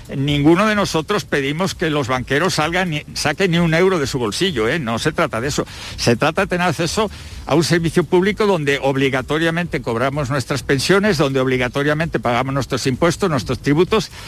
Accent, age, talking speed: Spanish, 60-79, 180 wpm